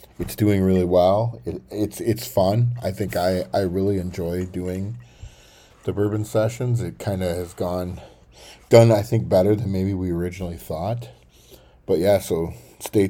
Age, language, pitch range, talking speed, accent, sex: 40-59, English, 85-105 Hz, 165 wpm, American, male